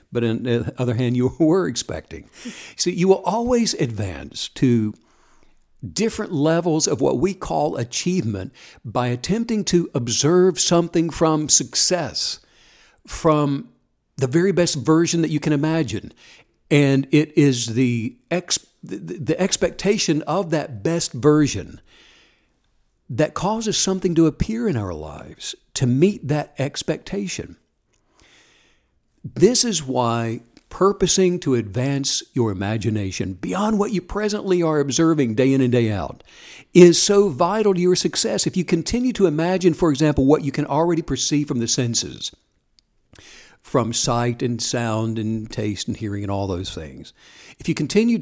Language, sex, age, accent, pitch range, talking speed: English, male, 60-79, American, 125-180 Hz, 145 wpm